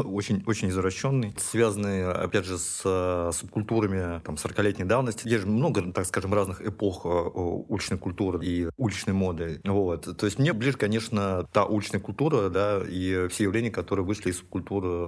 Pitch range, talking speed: 95-110 Hz, 160 wpm